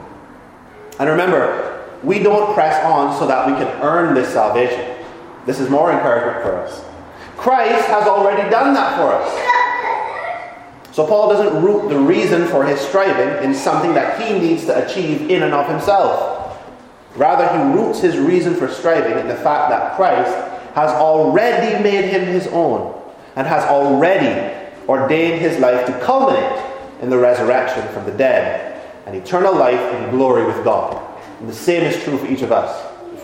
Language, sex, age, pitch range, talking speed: English, male, 30-49, 130-205 Hz, 170 wpm